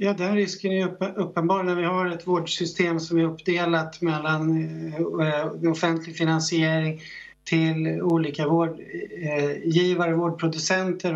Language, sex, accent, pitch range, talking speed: English, male, Swedish, 145-180 Hz, 110 wpm